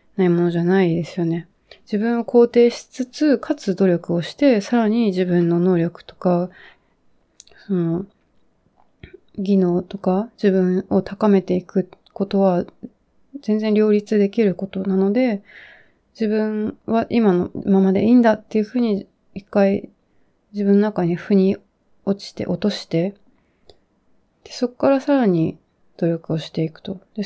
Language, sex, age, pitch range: Japanese, female, 30-49, 180-220 Hz